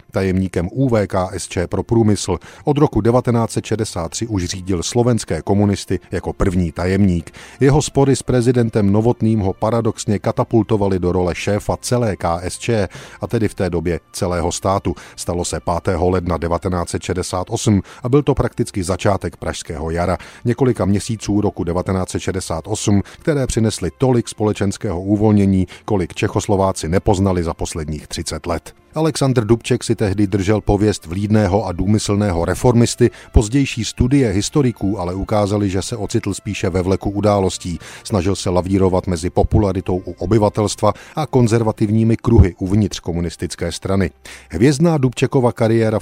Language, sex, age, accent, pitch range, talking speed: Czech, male, 40-59, native, 90-115 Hz, 130 wpm